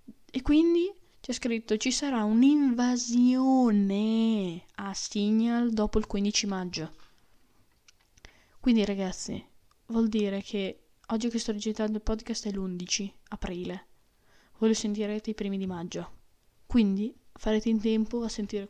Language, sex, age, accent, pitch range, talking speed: Italian, female, 10-29, native, 195-225 Hz, 130 wpm